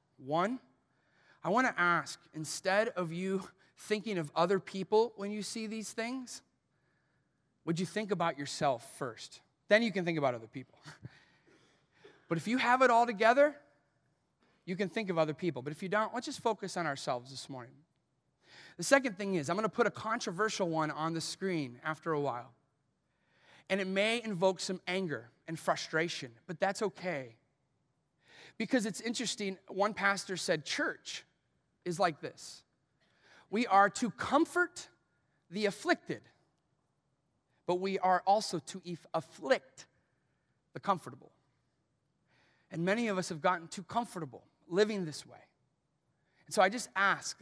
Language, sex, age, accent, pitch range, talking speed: English, male, 30-49, American, 150-205 Hz, 155 wpm